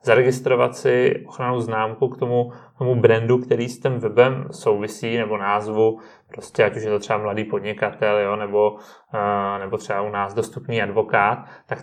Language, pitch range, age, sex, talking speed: Czech, 110-130 Hz, 30-49, male, 165 wpm